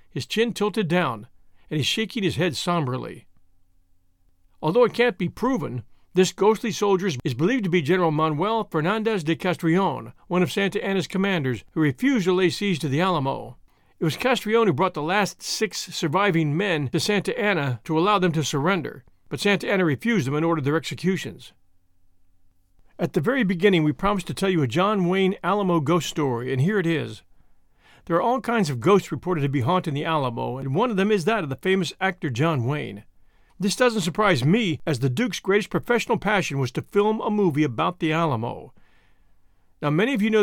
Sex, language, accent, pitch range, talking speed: male, English, American, 140-200 Hz, 195 wpm